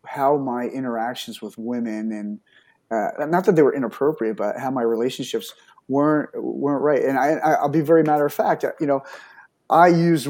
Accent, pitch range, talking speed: American, 120-155 Hz, 185 wpm